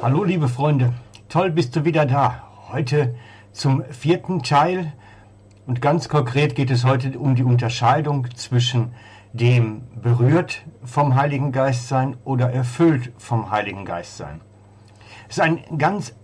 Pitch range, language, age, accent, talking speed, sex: 120-145 Hz, German, 60-79, German, 140 wpm, male